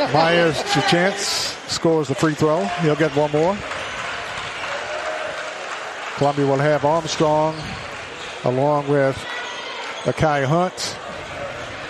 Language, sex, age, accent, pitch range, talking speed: English, male, 50-69, American, 150-175 Hz, 100 wpm